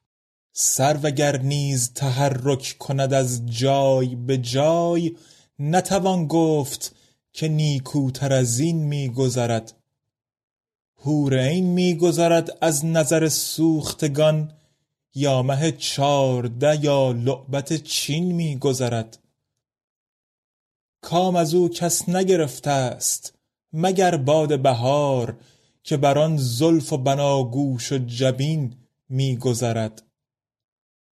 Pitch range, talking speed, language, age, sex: 130-155 Hz, 90 wpm, Persian, 30-49, male